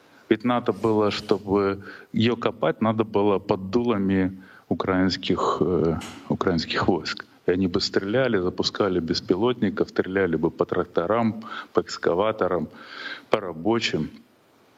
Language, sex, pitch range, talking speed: Russian, male, 95-115 Hz, 110 wpm